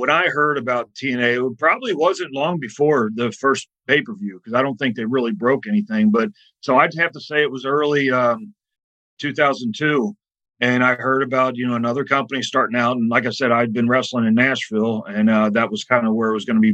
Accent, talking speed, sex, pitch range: American, 225 wpm, male, 120-150 Hz